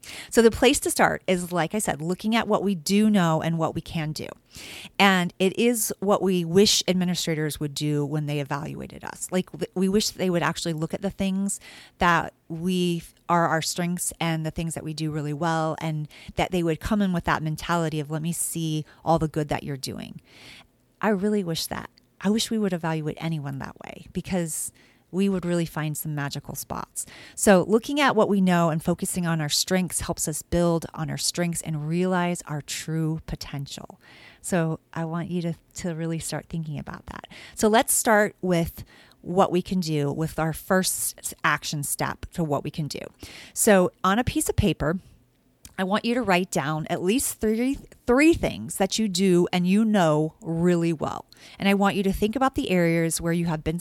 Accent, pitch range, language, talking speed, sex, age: American, 155-195 Hz, English, 205 wpm, female, 40-59